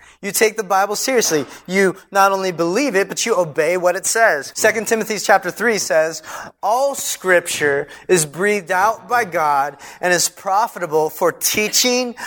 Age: 30-49